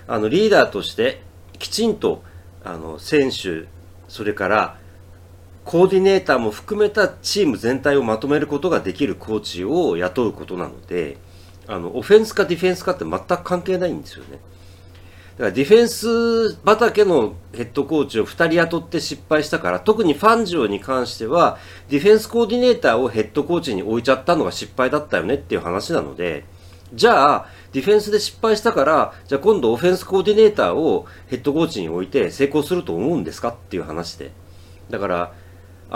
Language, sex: Japanese, male